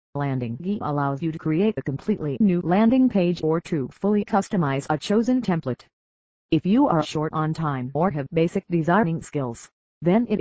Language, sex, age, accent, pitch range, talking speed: English, female, 40-59, American, 140-195 Hz, 175 wpm